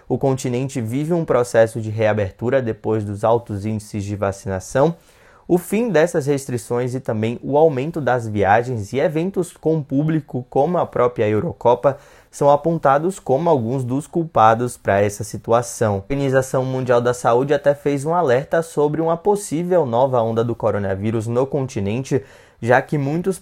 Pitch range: 115-150 Hz